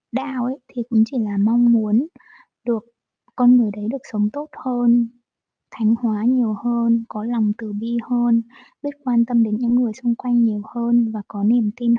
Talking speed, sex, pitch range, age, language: 195 wpm, female, 210-250 Hz, 20-39, Vietnamese